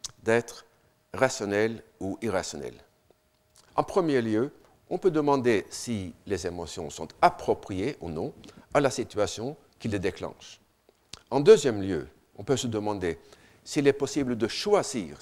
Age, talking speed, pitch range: 60-79, 140 wpm, 100-135 Hz